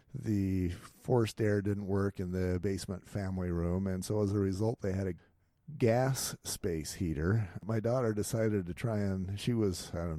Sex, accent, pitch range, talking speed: male, American, 90-110 Hz, 185 wpm